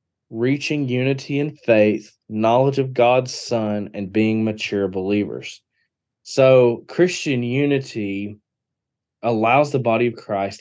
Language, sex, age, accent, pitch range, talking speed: English, male, 20-39, American, 105-125 Hz, 115 wpm